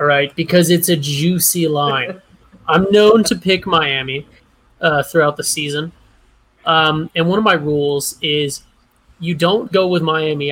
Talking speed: 160 wpm